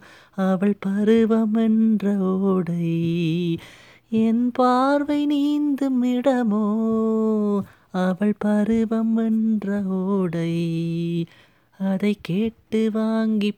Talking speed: 55 wpm